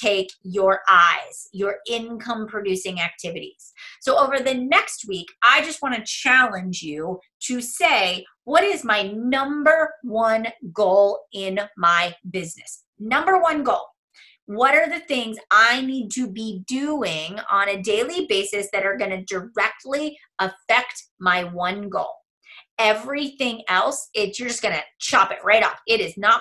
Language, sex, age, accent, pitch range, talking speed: English, female, 30-49, American, 195-265 Hz, 150 wpm